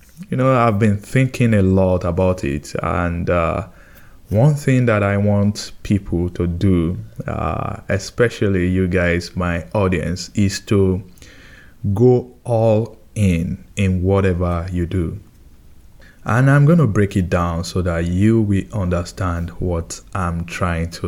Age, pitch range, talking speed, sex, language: 20-39, 90-120 Hz, 140 wpm, male, English